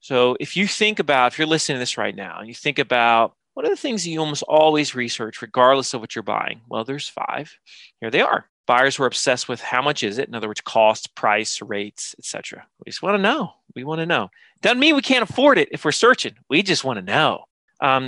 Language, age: English, 30-49